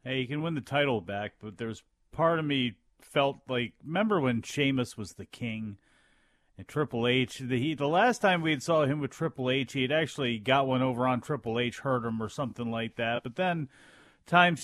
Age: 40-59